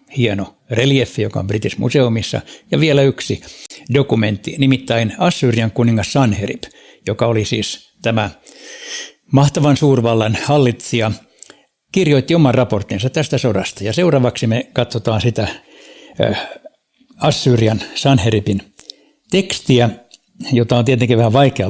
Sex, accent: male, native